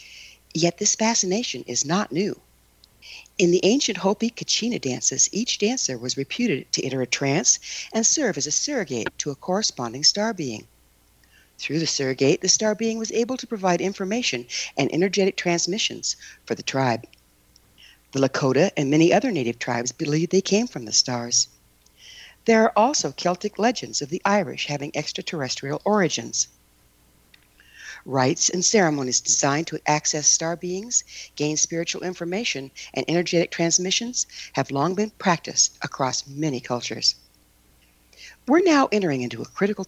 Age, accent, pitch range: 60-79, American, 125-195 Hz